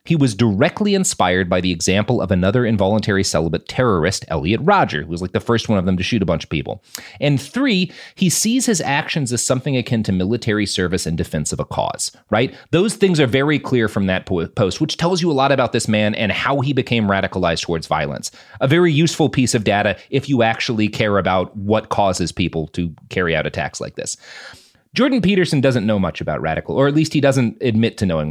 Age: 30-49